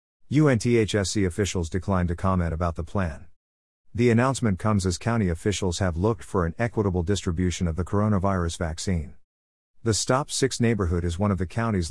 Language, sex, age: English, male, 50-69